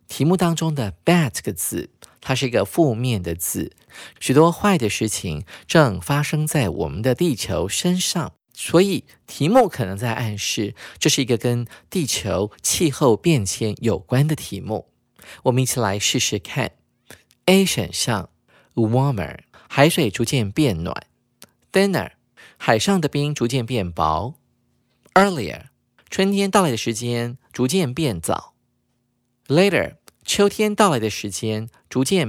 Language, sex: Chinese, male